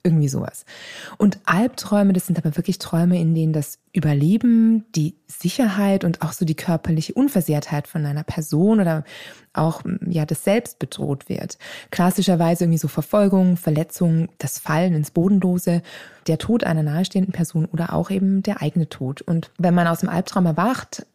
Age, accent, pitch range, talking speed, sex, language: 20-39, German, 160-200 Hz, 165 wpm, female, German